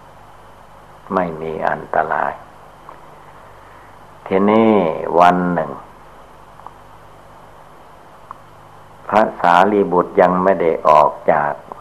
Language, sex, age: Thai, male, 60-79